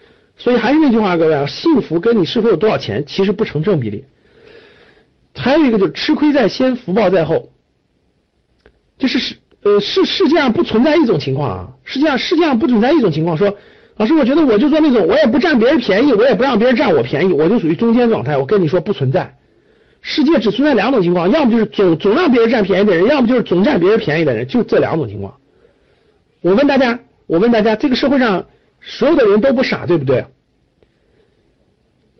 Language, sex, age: Chinese, male, 50-69